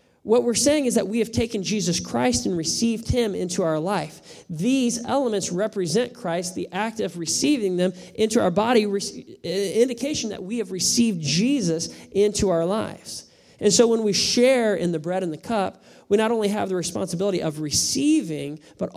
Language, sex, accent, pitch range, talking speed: English, male, American, 175-230 Hz, 180 wpm